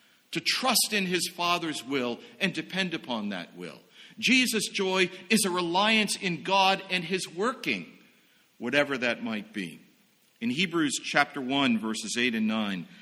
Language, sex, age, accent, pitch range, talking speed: English, male, 50-69, American, 145-220 Hz, 150 wpm